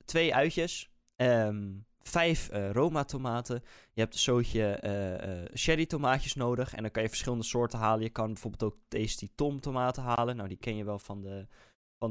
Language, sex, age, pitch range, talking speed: Dutch, male, 20-39, 110-135 Hz, 190 wpm